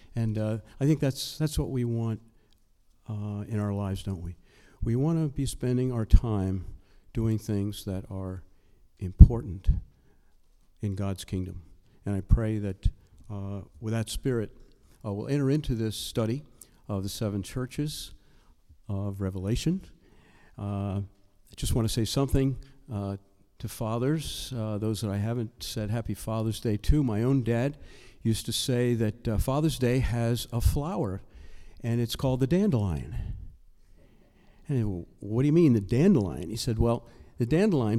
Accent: American